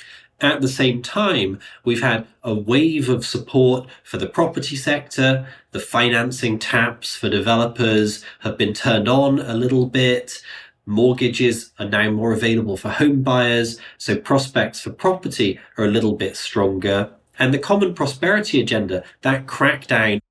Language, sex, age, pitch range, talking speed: English, male, 30-49, 105-130 Hz, 150 wpm